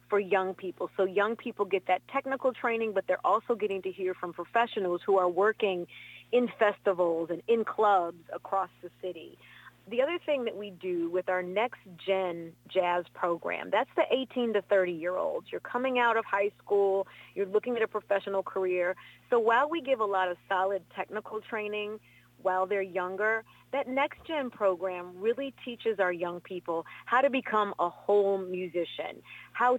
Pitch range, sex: 180-225 Hz, female